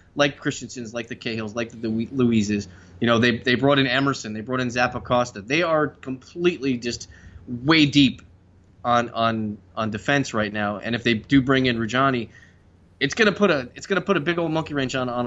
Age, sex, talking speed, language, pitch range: 20-39, male, 210 wpm, English, 110-145 Hz